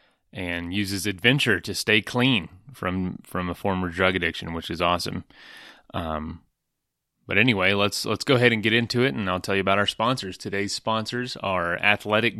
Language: English